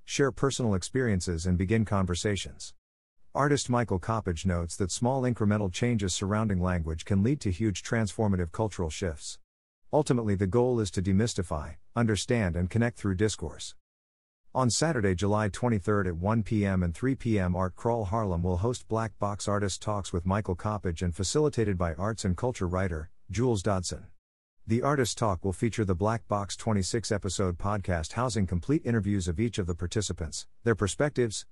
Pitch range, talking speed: 90-115 Hz, 165 wpm